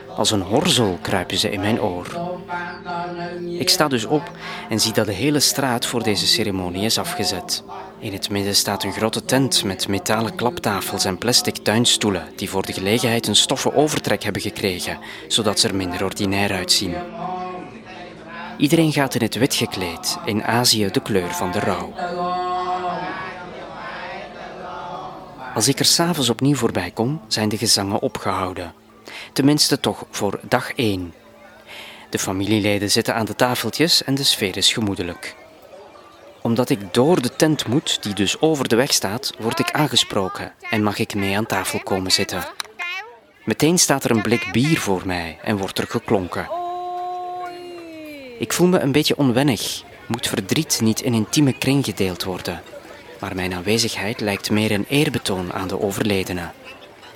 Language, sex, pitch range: Dutch, male, 100-155 Hz